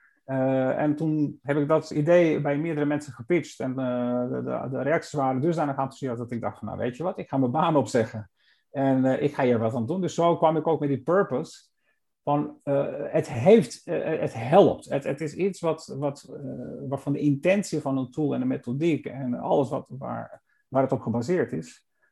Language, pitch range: Dutch, 125-150 Hz